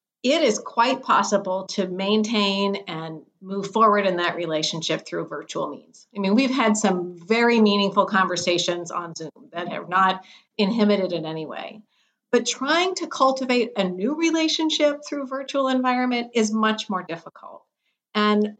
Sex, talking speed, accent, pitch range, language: female, 150 wpm, American, 185-230 Hz, English